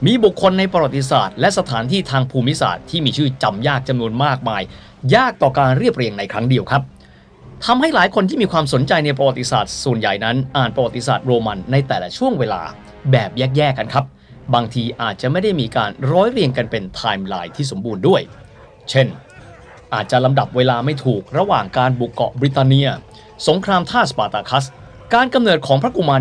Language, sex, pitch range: Thai, male, 120-170 Hz